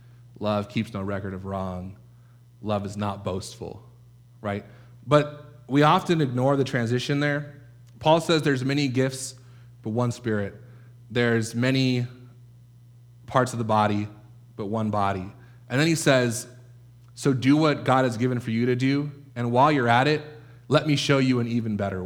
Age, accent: 30-49, American